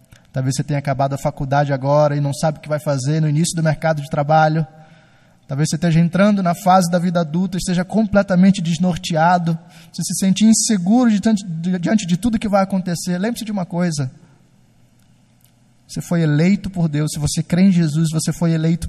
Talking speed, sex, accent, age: 190 wpm, male, Brazilian, 20-39